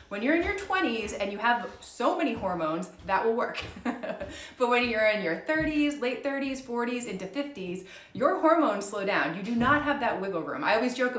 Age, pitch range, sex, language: 30-49, 185-245 Hz, female, English